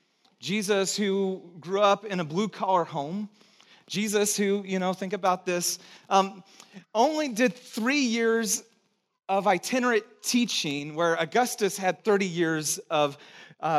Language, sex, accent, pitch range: English, male, American, 175-230 Hz